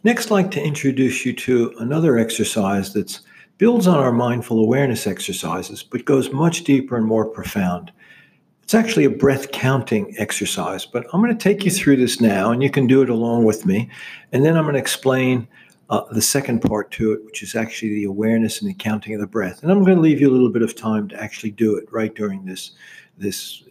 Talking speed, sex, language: 225 wpm, male, English